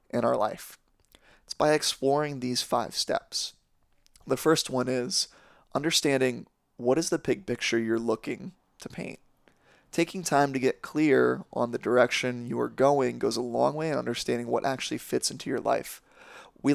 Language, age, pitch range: English, 20-39, 120-140 Hz